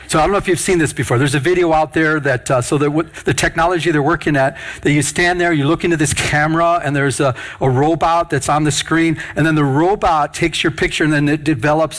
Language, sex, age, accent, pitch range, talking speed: English, male, 50-69, American, 125-160 Hz, 260 wpm